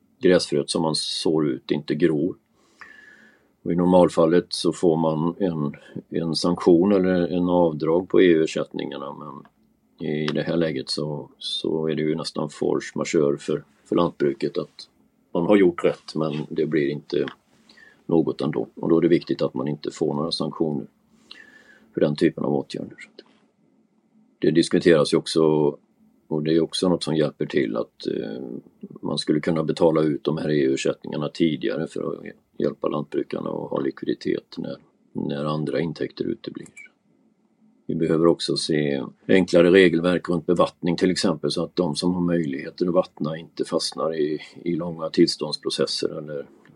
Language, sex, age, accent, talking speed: Swedish, male, 40-59, native, 155 wpm